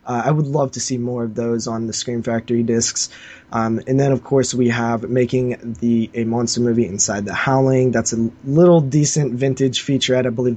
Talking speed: 210 wpm